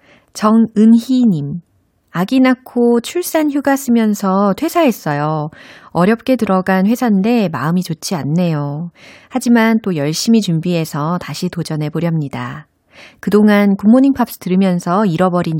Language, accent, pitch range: Korean, native, 160-235 Hz